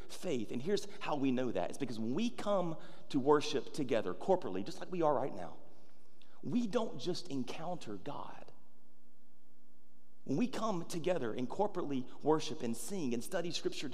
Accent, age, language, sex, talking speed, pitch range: American, 30-49, English, male, 170 wpm, 130-195 Hz